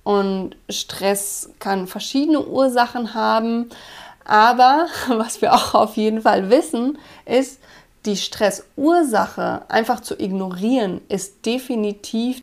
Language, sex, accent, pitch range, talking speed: German, female, German, 200-255 Hz, 105 wpm